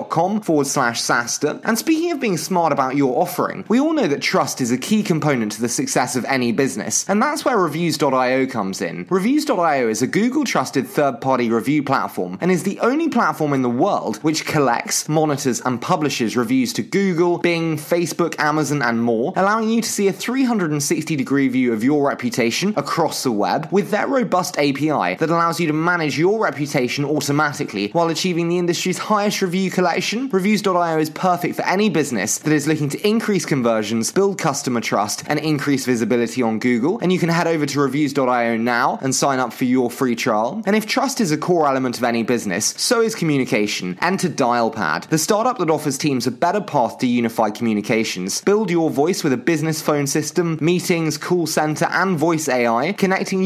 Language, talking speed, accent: English, 185 wpm, British